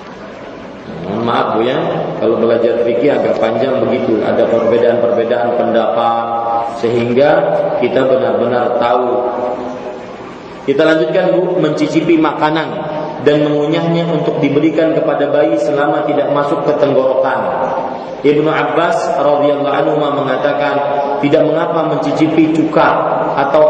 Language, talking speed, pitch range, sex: Malay, 100 wpm, 140-155 Hz, male